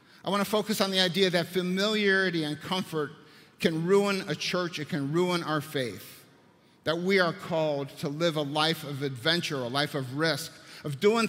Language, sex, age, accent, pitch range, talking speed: English, male, 50-69, American, 155-190 Hz, 185 wpm